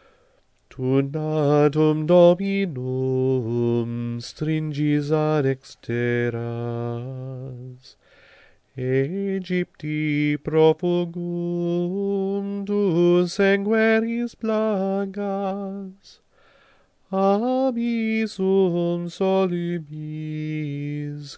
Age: 30-49